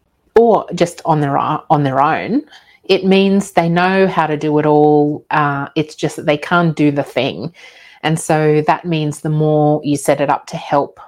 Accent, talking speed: Australian, 200 wpm